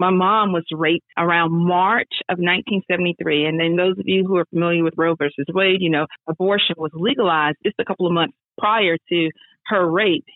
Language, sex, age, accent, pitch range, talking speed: English, female, 40-59, American, 165-185 Hz, 195 wpm